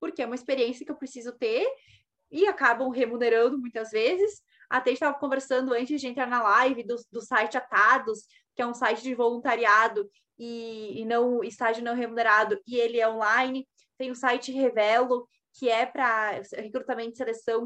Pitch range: 235-295 Hz